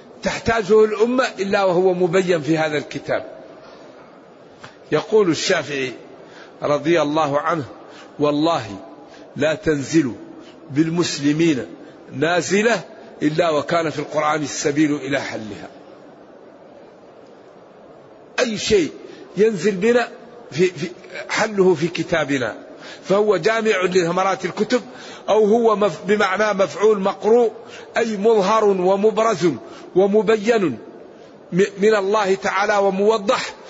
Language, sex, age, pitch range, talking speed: Arabic, male, 50-69, 165-215 Hz, 85 wpm